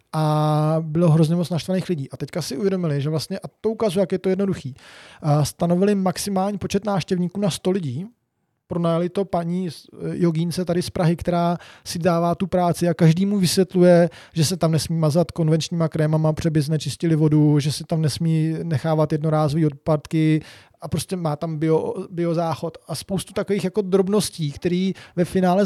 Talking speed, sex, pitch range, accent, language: 170 wpm, male, 155-185 Hz, native, Czech